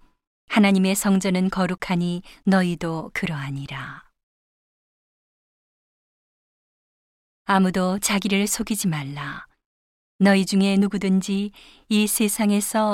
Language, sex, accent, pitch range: Korean, female, native, 175-205 Hz